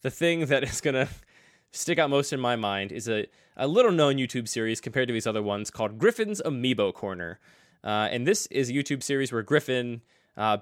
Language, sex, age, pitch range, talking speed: English, male, 20-39, 105-130 Hz, 210 wpm